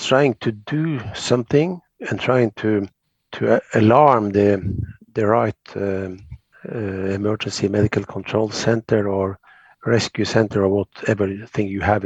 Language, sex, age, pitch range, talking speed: English, male, 50-69, 105-130 Hz, 135 wpm